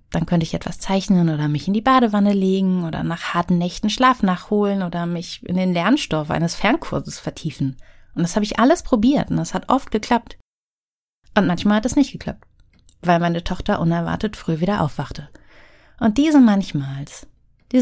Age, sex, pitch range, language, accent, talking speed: 30-49, female, 165-200 Hz, German, German, 180 wpm